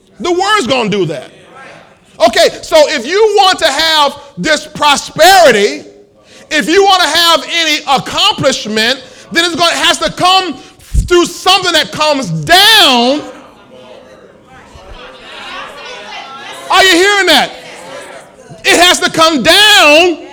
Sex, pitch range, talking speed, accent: male, 275-355 Hz, 120 wpm, American